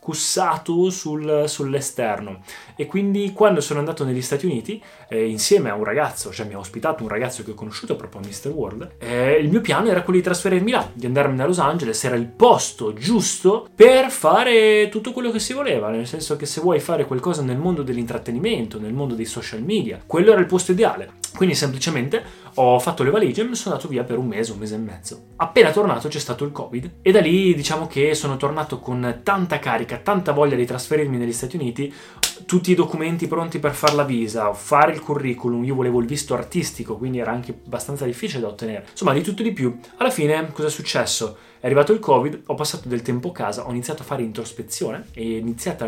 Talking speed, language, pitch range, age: 220 wpm, Italian, 115-160 Hz, 20-39